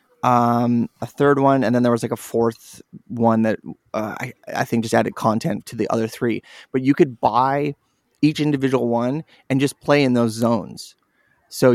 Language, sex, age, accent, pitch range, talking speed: English, male, 20-39, American, 115-140 Hz, 195 wpm